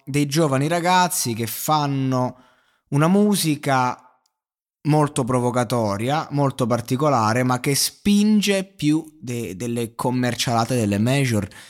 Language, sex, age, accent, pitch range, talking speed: Italian, male, 20-39, native, 110-140 Hz, 100 wpm